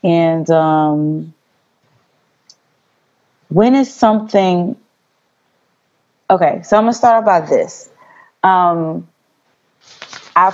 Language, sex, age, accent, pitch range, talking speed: English, female, 20-39, American, 160-200 Hz, 85 wpm